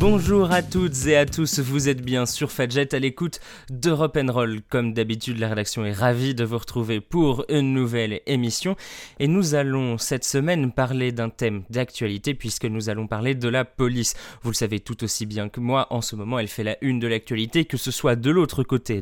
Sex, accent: male, French